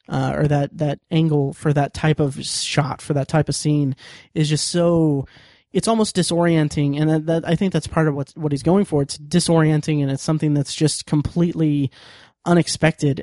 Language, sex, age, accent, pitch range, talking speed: English, male, 20-39, American, 145-170 Hz, 195 wpm